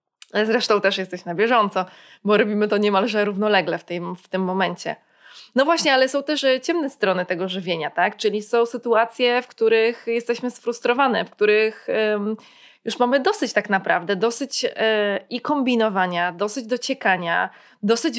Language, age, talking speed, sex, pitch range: Polish, 20-39, 160 wpm, female, 195-240 Hz